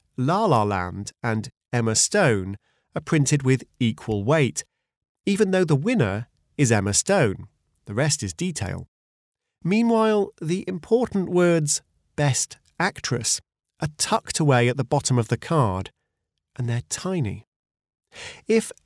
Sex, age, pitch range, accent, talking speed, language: male, 40-59, 105-155 Hz, British, 130 wpm, English